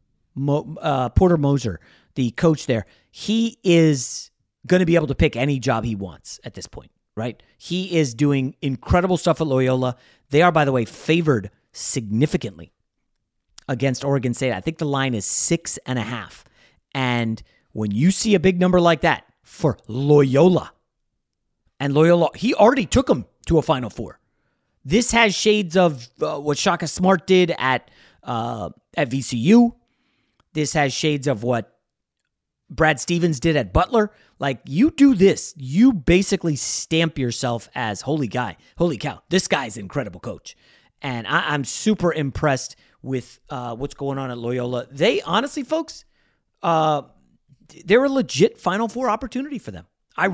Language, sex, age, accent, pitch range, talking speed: English, male, 30-49, American, 130-185 Hz, 160 wpm